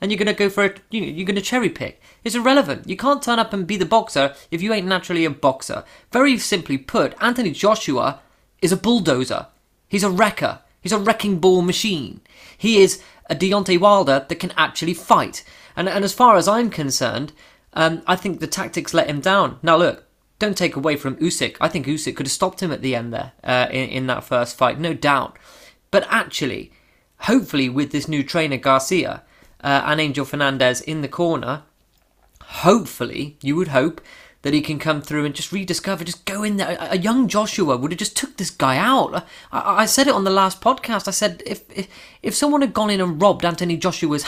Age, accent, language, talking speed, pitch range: 20-39, British, English, 215 wpm, 150-215 Hz